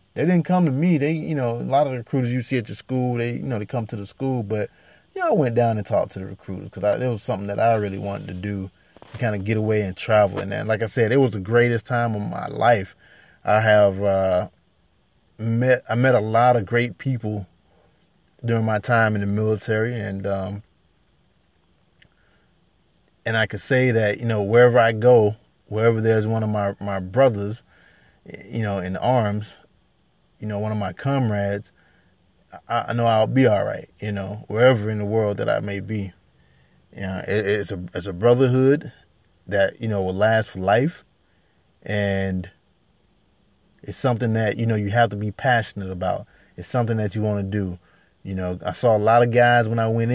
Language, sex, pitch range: English, male, 100-120 Hz